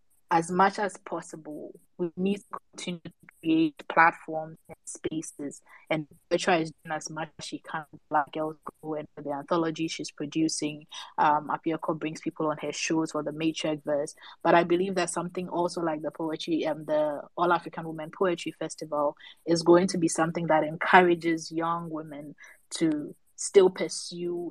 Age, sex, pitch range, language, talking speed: 20-39, female, 160-185 Hz, English, 170 wpm